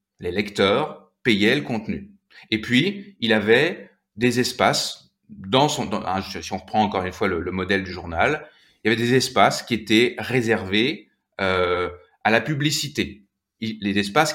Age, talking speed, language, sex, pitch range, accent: 30-49, 165 wpm, French, male, 95-140 Hz, French